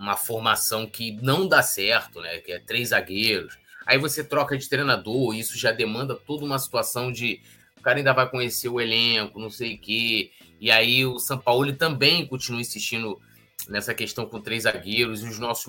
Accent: Brazilian